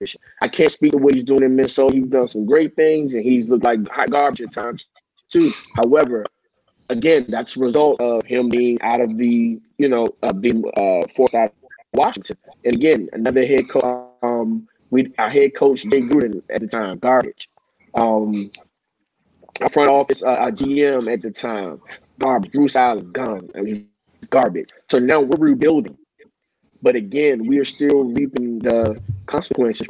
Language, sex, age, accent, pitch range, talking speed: English, male, 20-39, American, 115-140 Hz, 175 wpm